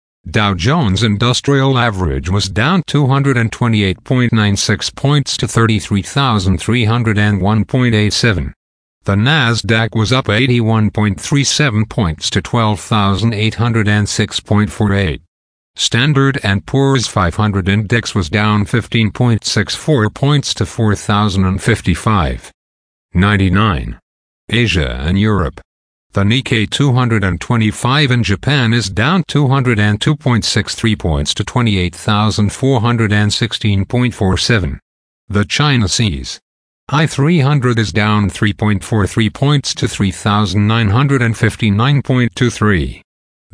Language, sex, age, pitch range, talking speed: English, male, 50-69, 100-125 Hz, 75 wpm